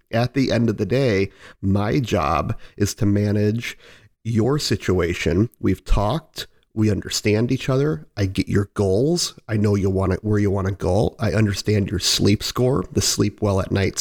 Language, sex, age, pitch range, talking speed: English, male, 40-59, 100-115 Hz, 185 wpm